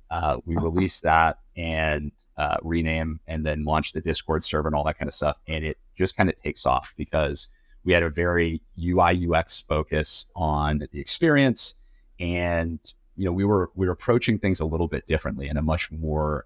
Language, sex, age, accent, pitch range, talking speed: English, male, 30-49, American, 75-85 Hz, 195 wpm